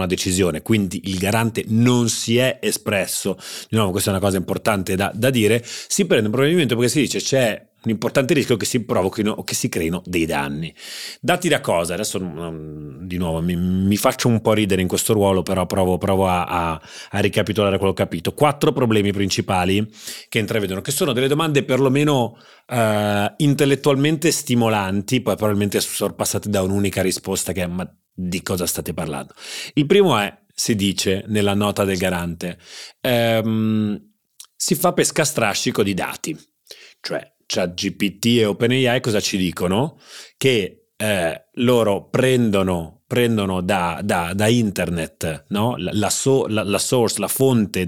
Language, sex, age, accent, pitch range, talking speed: Italian, male, 30-49, native, 95-125 Hz, 165 wpm